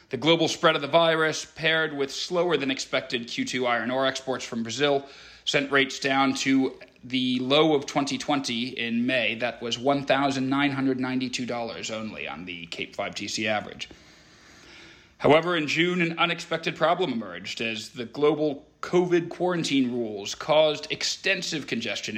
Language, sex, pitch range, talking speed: English, male, 120-150 Hz, 140 wpm